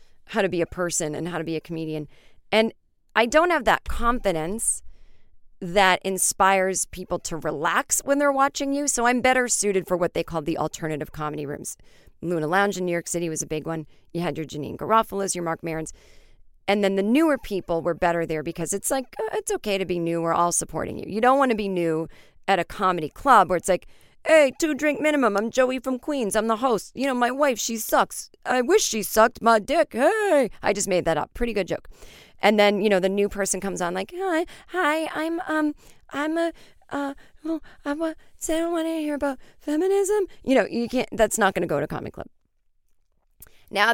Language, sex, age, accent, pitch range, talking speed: English, female, 40-59, American, 165-255 Hz, 225 wpm